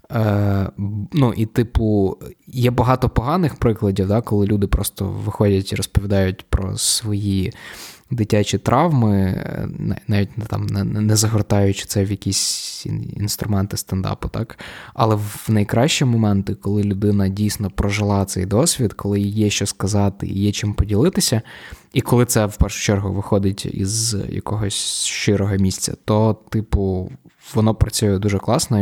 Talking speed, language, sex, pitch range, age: 135 wpm, Ukrainian, male, 100-115 Hz, 20-39